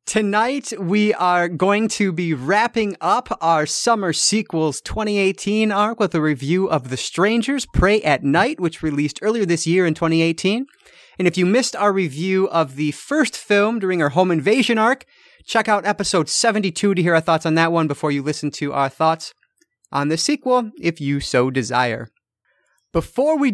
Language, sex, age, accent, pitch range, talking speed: English, male, 30-49, American, 160-215 Hz, 180 wpm